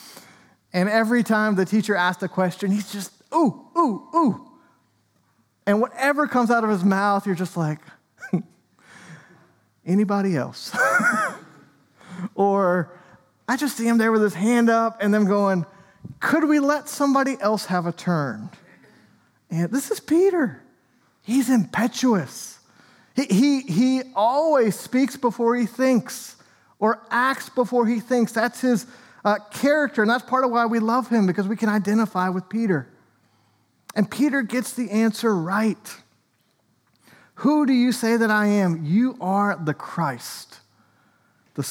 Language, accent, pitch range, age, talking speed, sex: English, American, 180-240 Hz, 30-49, 145 wpm, male